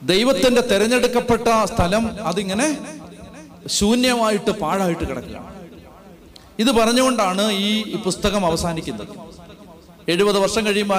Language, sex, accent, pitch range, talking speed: Malayalam, male, native, 160-215 Hz, 80 wpm